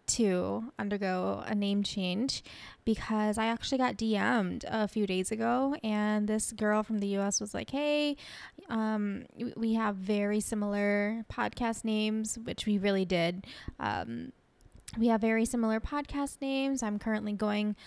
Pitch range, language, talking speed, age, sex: 205-235 Hz, English, 150 wpm, 10-29, female